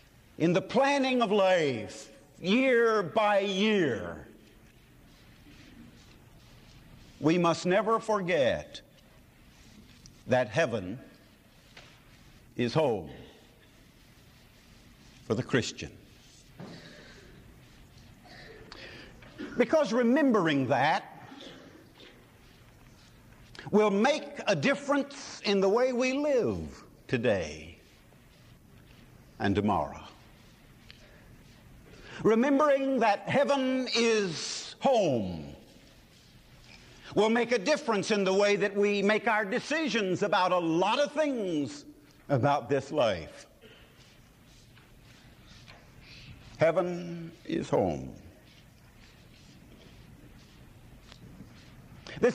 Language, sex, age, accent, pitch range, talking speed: English, male, 60-79, American, 140-230 Hz, 70 wpm